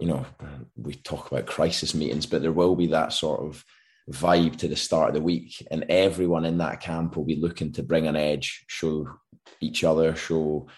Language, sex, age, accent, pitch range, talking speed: English, male, 20-39, British, 80-85 Hz, 205 wpm